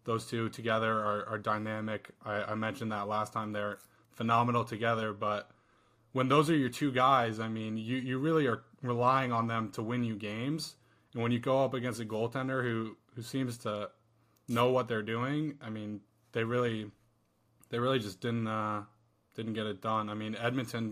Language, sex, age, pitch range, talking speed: English, male, 20-39, 110-125 Hz, 190 wpm